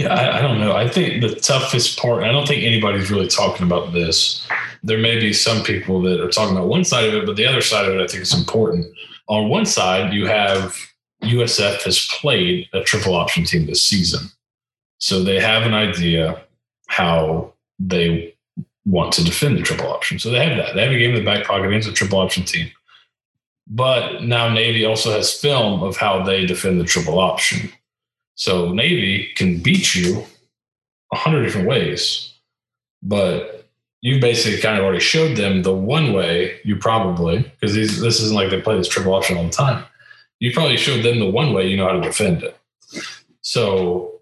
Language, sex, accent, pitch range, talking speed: English, male, American, 95-115 Hz, 200 wpm